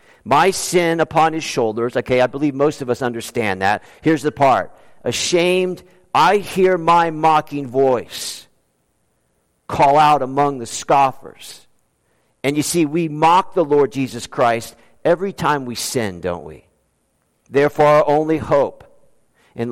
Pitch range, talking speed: 130-175 Hz, 145 wpm